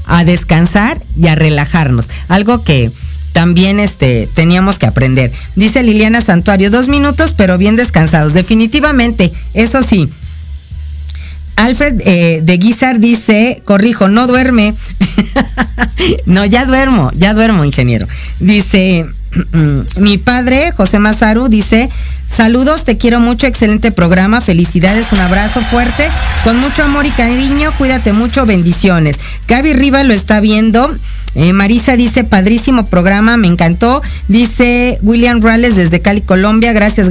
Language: Spanish